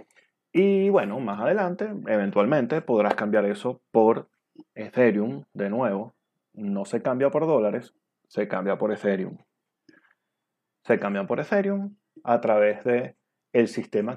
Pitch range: 105-155 Hz